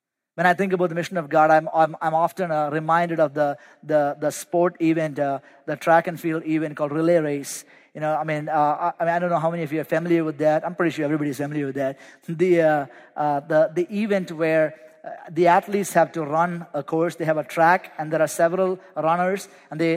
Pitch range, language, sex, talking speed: 155-180 Hz, English, male, 240 wpm